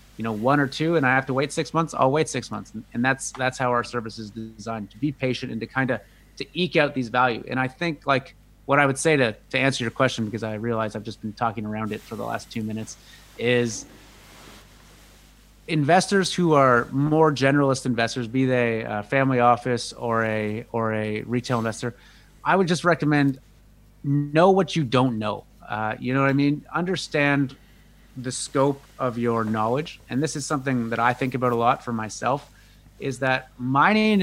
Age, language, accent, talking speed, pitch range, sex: 30-49, English, American, 205 wpm, 115-140 Hz, male